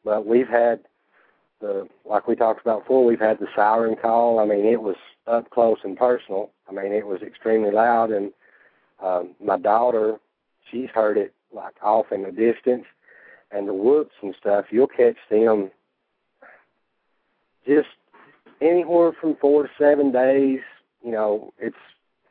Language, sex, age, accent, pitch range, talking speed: English, male, 50-69, American, 110-130 Hz, 155 wpm